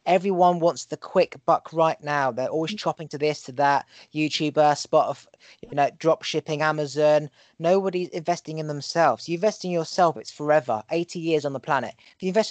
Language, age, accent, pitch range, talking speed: English, 20-39, British, 150-180 Hz, 190 wpm